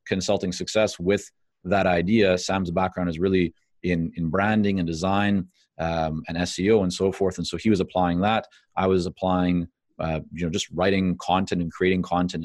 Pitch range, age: 85-95 Hz, 30-49